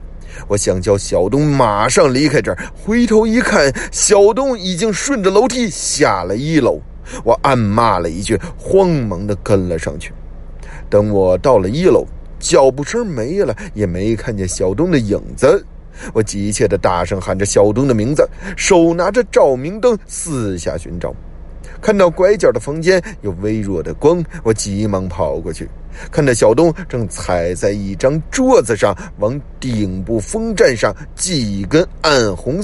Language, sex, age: Chinese, male, 30-49